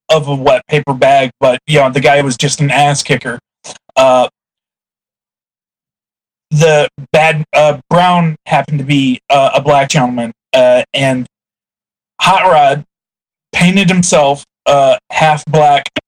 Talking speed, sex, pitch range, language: 135 wpm, male, 140-165 Hz, English